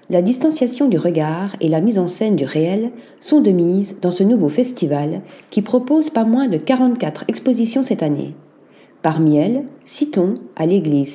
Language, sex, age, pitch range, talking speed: French, female, 40-59, 165-240 Hz, 170 wpm